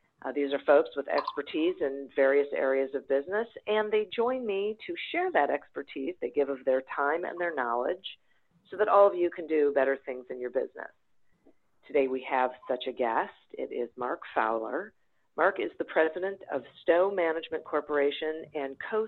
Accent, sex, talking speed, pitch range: American, female, 180 wpm, 140-195 Hz